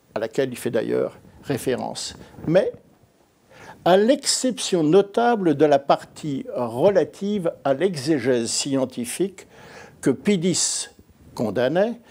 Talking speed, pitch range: 105 wpm, 140-220 Hz